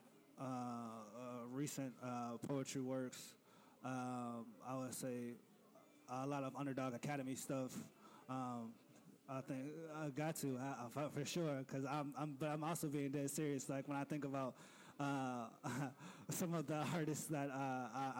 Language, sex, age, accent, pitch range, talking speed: English, male, 20-39, American, 125-145 Hz, 155 wpm